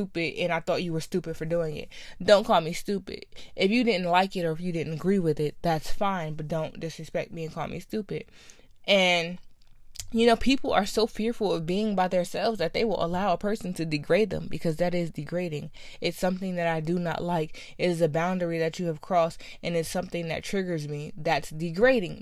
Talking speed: 220 wpm